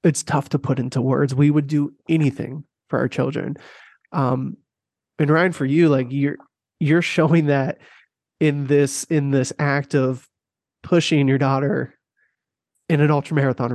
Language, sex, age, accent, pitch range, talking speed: English, male, 20-39, American, 135-165 Hz, 155 wpm